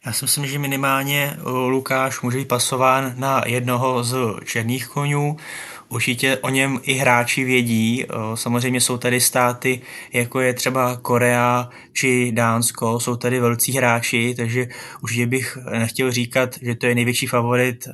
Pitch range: 120-130 Hz